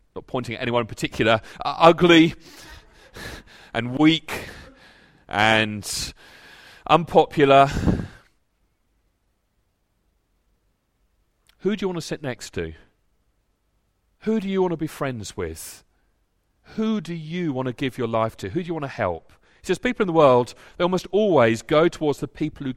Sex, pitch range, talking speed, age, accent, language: male, 100-160 Hz, 150 wpm, 40-59, British, English